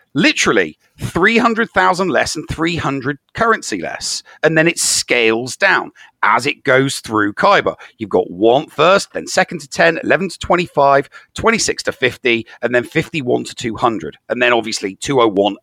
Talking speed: 155 wpm